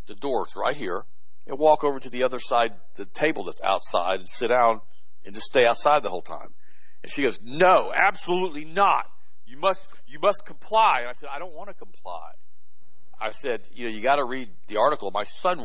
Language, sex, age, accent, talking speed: English, male, 50-69, American, 215 wpm